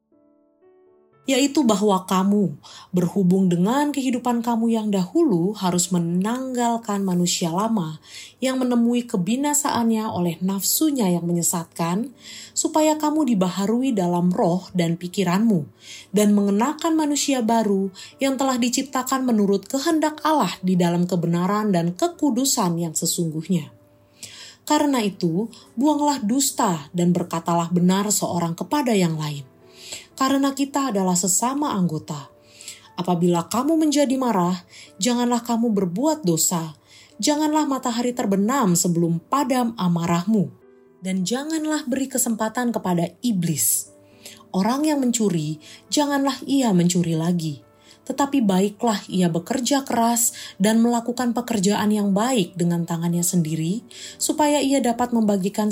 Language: Indonesian